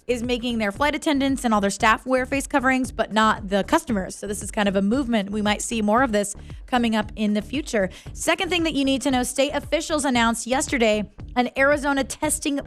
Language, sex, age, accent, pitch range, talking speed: English, female, 20-39, American, 210-270 Hz, 225 wpm